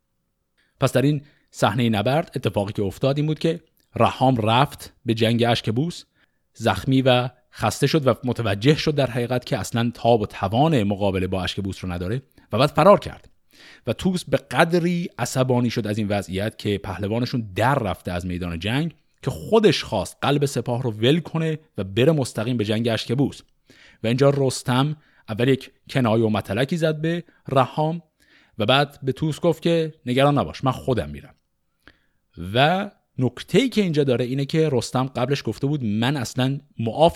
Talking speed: 170 wpm